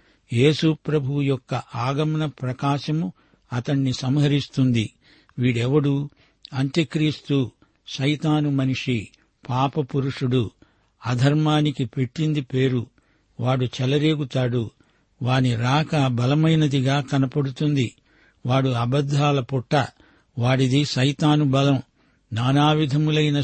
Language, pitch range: Telugu, 130-150 Hz